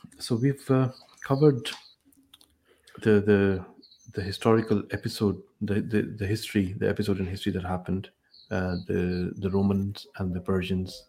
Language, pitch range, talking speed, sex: English, 90-105 Hz, 140 wpm, male